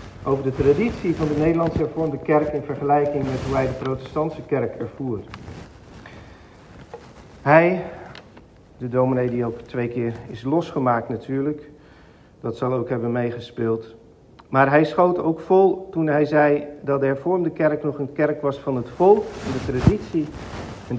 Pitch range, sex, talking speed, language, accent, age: 130-160 Hz, male, 155 wpm, Dutch, Dutch, 50-69